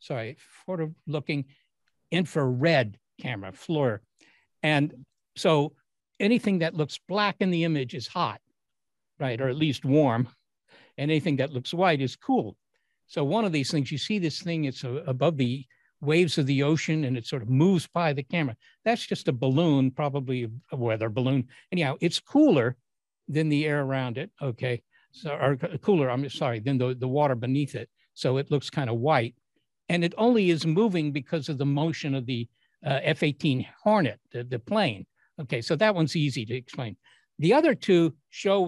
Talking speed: 180 wpm